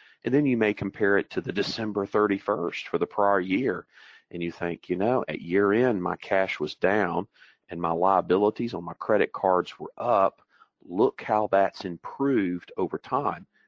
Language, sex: English, male